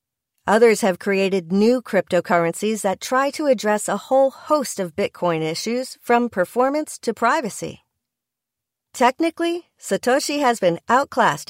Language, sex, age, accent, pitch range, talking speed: English, female, 40-59, American, 190-260 Hz, 125 wpm